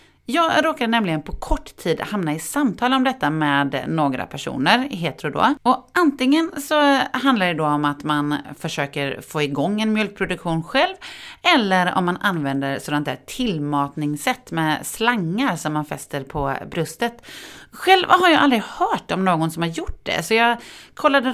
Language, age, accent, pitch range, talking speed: Swedish, 30-49, native, 155-255 Hz, 170 wpm